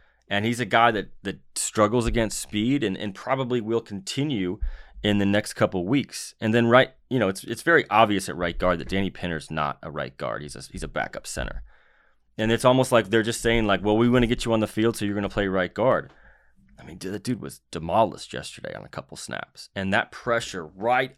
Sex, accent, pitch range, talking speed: male, American, 95-120 Hz, 235 wpm